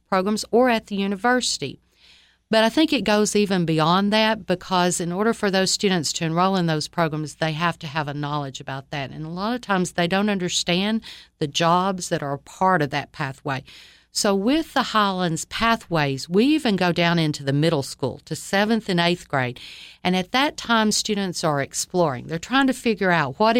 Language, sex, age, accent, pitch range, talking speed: English, female, 50-69, American, 160-210 Hz, 200 wpm